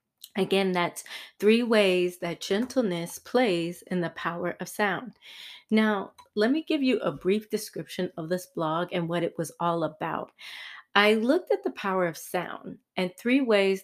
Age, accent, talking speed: 30-49, American, 170 wpm